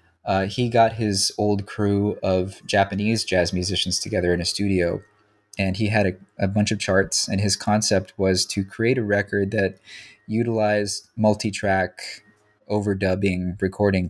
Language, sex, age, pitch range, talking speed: English, male, 20-39, 95-110 Hz, 150 wpm